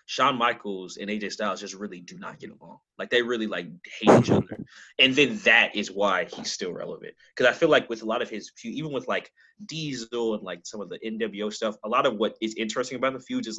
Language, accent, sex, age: English, American, male, 20-39